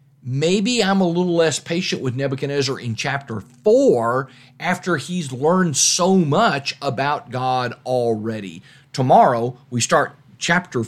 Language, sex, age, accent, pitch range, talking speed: English, male, 40-59, American, 130-180 Hz, 125 wpm